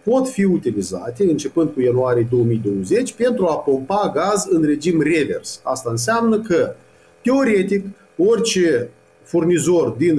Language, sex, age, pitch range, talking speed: Romanian, male, 40-59, 130-200 Hz, 125 wpm